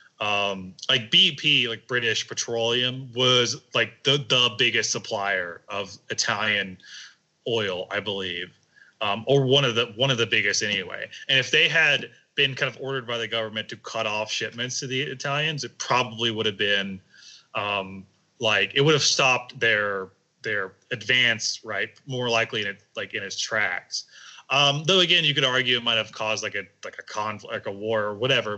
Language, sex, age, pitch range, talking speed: English, male, 20-39, 110-140 Hz, 185 wpm